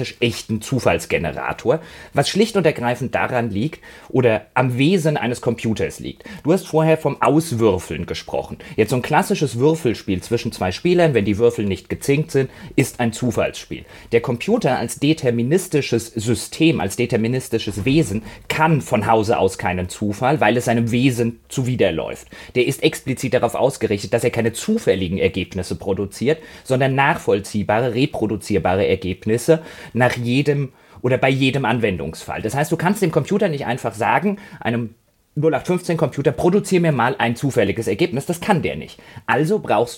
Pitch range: 115-155 Hz